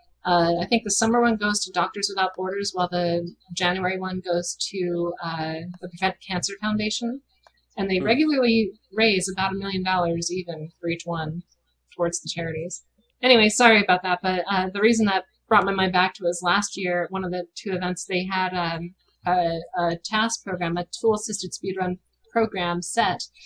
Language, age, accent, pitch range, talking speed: English, 30-49, American, 175-215 Hz, 185 wpm